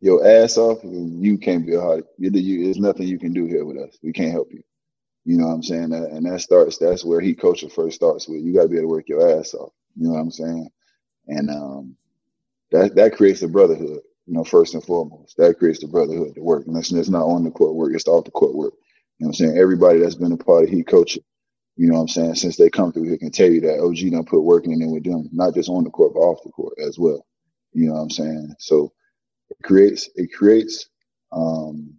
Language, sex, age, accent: English, male, 20-39, American